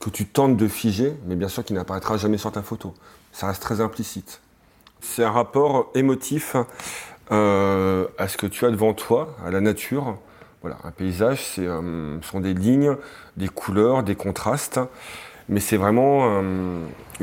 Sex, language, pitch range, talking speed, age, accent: male, French, 95-120 Hz, 170 wpm, 40-59, French